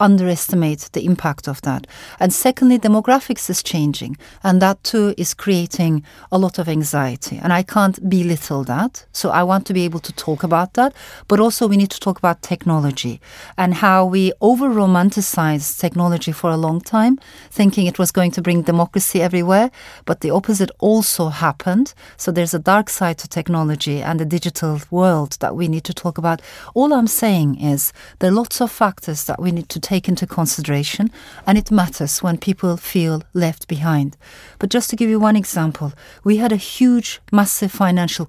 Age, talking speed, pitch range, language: 40-59, 190 wpm, 170-215 Hz, English